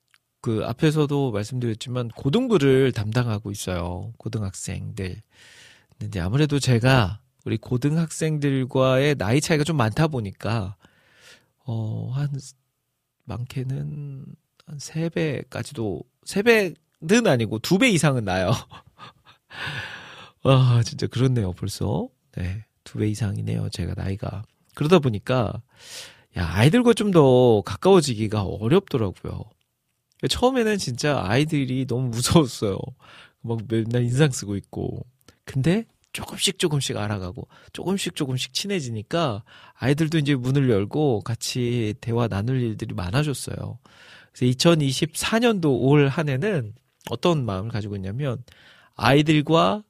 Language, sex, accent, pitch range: Korean, male, native, 110-150 Hz